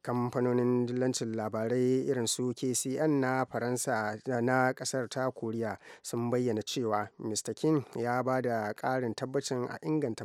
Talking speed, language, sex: 140 wpm, English, male